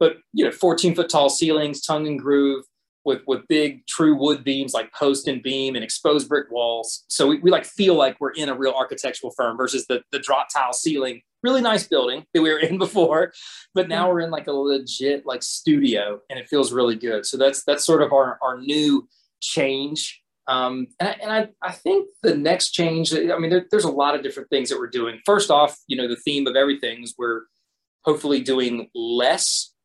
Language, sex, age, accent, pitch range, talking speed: English, male, 30-49, American, 125-165 Hz, 215 wpm